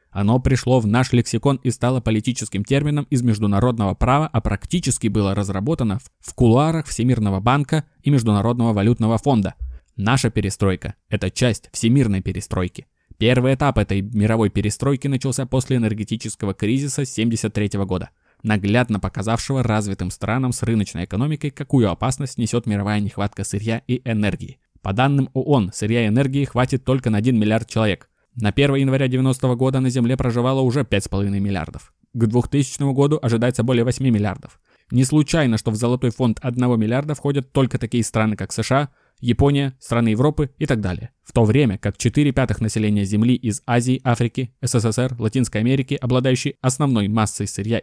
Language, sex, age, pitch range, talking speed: Russian, male, 20-39, 105-135 Hz, 155 wpm